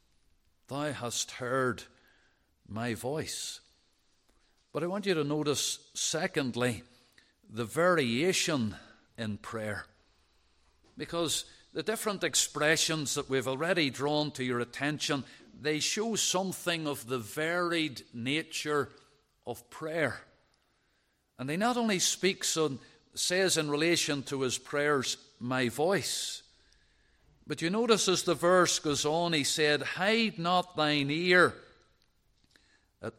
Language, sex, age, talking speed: English, male, 50-69, 120 wpm